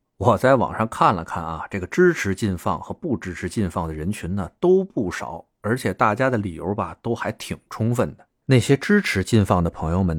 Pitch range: 90-115 Hz